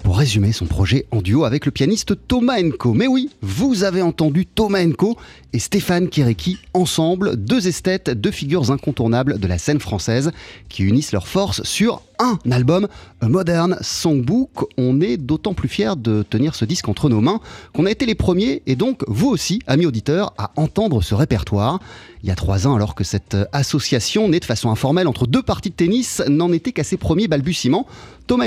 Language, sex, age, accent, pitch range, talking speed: French, male, 30-49, French, 115-180 Hz, 195 wpm